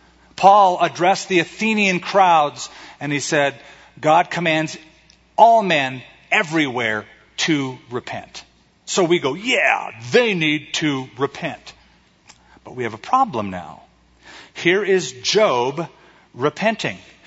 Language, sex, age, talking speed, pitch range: English, male, 50-69, 115 wpm, 125-195 Hz